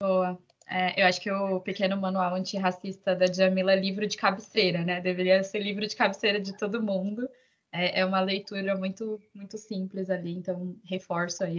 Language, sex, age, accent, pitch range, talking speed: Portuguese, female, 10-29, Brazilian, 185-210 Hz, 180 wpm